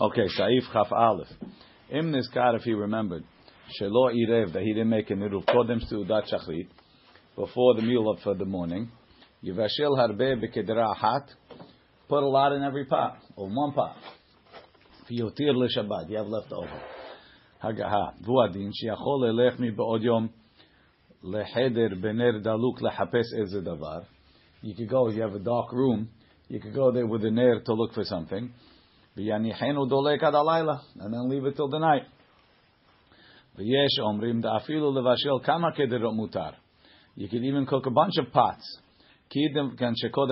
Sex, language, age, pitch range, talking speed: male, English, 50-69, 110-135 Hz, 105 wpm